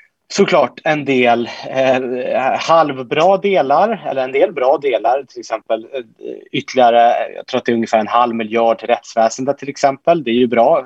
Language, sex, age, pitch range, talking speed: Swedish, male, 30-49, 115-140 Hz, 160 wpm